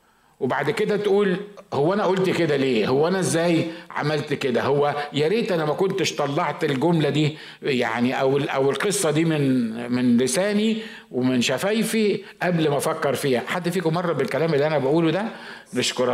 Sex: male